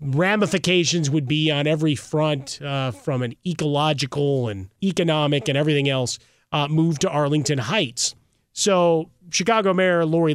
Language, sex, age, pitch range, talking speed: English, male, 30-49, 135-175 Hz, 140 wpm